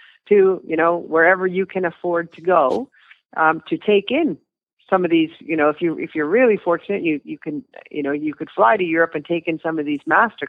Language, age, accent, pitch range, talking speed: English, 40-59, American, 150-185 Hz, 235 wpm